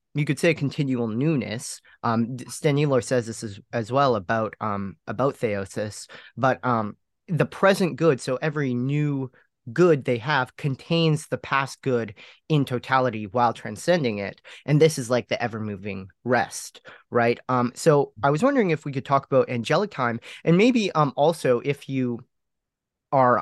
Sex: male